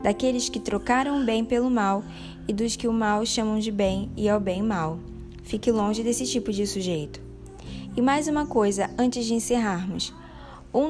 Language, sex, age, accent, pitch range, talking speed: Portuguese, female, 10-29, Brazilian, 200-255 Hz, 180 wpm